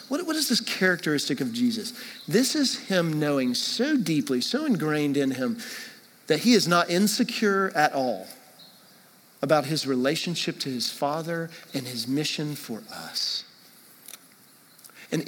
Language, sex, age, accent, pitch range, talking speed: English, male, 40-59, American, 145-225 Hz, 140 wpm